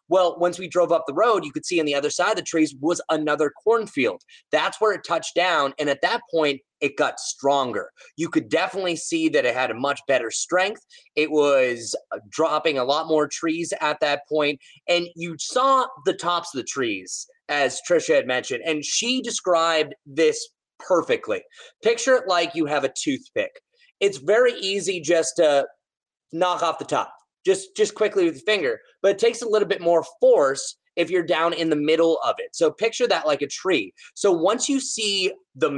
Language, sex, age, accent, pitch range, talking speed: English, male, 30-49, American, 155-235 Hz, 200 wpm